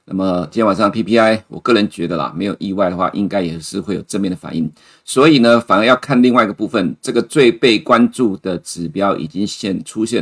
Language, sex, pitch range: Chinese, male, 95-120 Hz